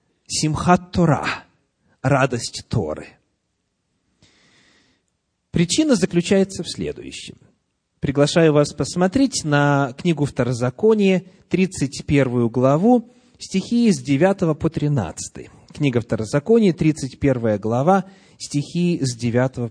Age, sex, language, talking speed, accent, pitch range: 30-49, male, Russian, 85 wpm, native, 130-190 Hz